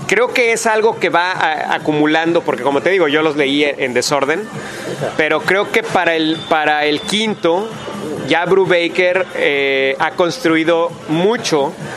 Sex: male